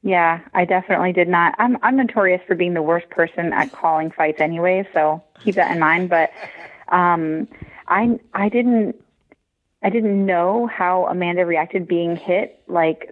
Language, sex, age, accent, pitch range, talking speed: English, female, 30-49, American, 175-215 Hz, 165 wpm